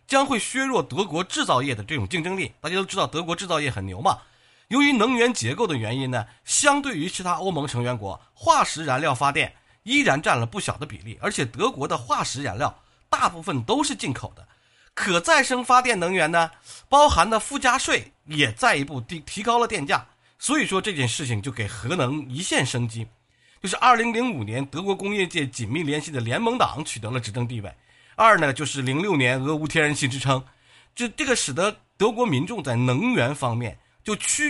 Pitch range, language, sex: 120-200 Hz, Chinese, male